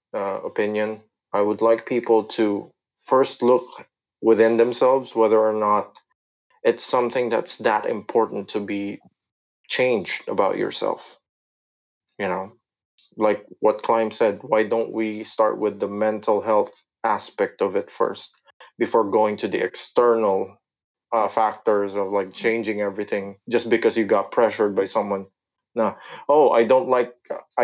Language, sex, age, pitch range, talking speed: Filipino, male, 20-39, 100-125 Hz, 140 wpm